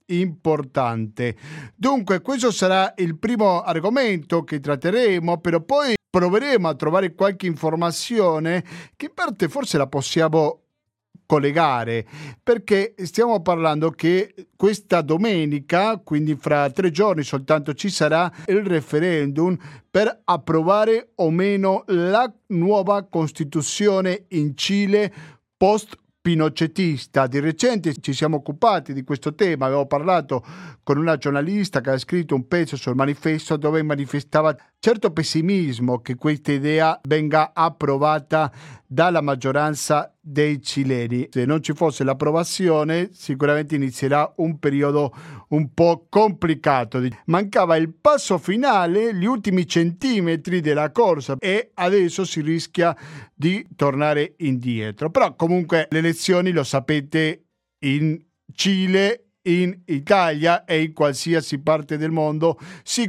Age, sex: 40-59, male